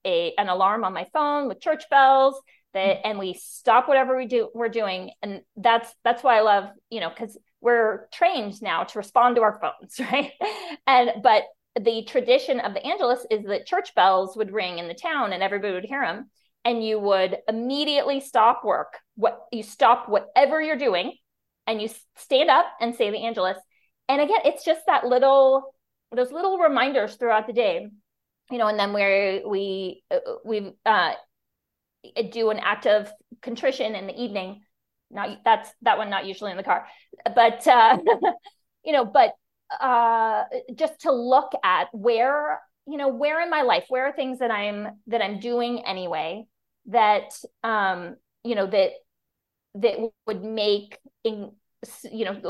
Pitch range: 205-270 Hz